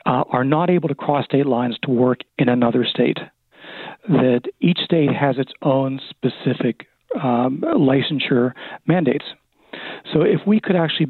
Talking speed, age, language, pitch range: 150 wpm, 40-59, English, 130-165 Hz